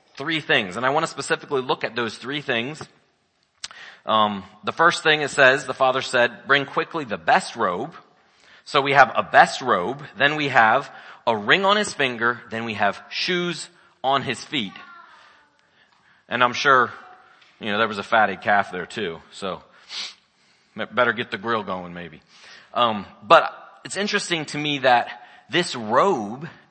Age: 40-59